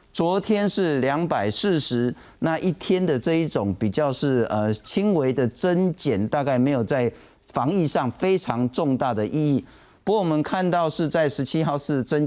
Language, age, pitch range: Chinese, 50-69, 125-165 Hz